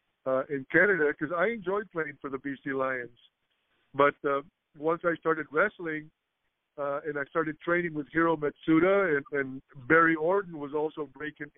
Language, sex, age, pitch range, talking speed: English, male, 50-69, 145-165 Hz, 165 wpm